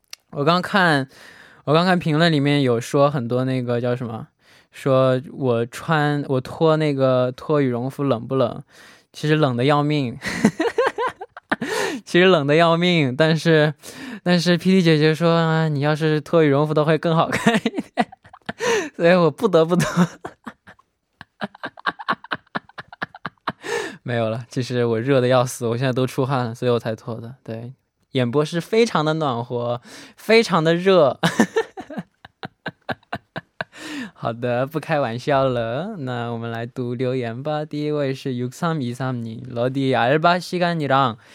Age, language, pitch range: 10-29, Korean, 125-165 Hz